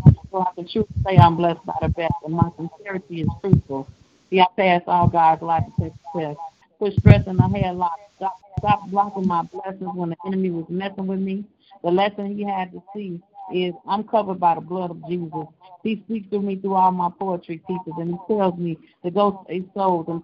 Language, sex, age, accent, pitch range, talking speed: English, female, 50-69, American, 170-190 Hz, 220 wpm